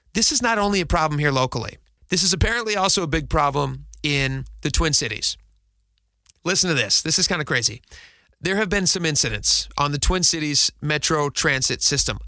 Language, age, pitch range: English, 30-49, 135-175 Hz